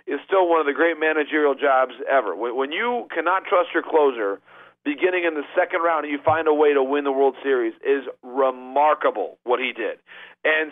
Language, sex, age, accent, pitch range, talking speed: English, male, 40-59, American, 150-200 Hz, 200 wpm